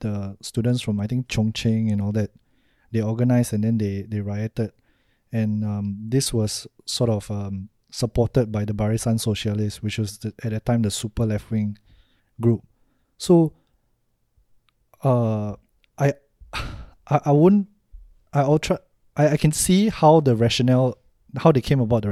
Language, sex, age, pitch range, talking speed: English, male, 20-39, 110-135 Hz, 155 wpm